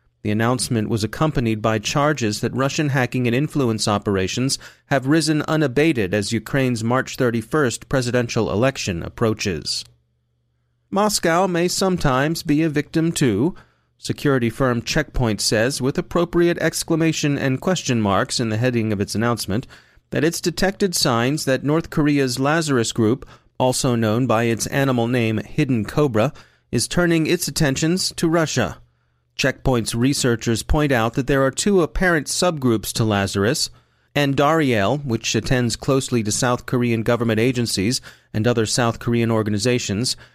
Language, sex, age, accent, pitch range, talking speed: English, male, 30-49, American, 115-145 Hz, 140 wpm